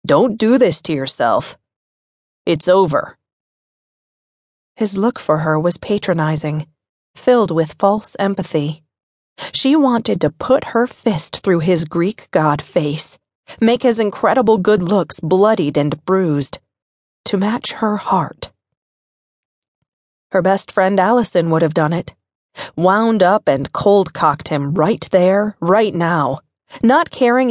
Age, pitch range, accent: 30-49, 155-215 Hz, American